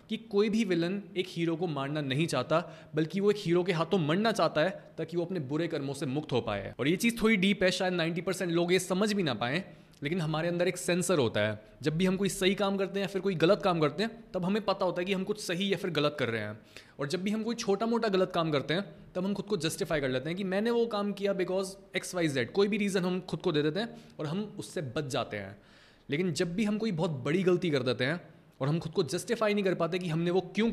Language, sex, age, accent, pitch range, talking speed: Hindi, male, 20-39, native, 150-195 Hz, 285 wpm